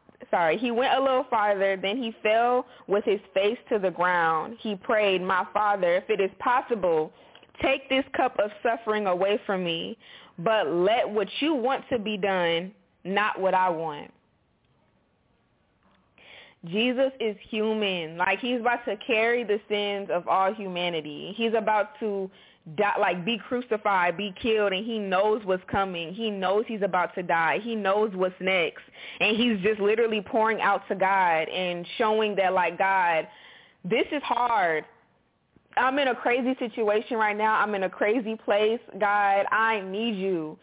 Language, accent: English, American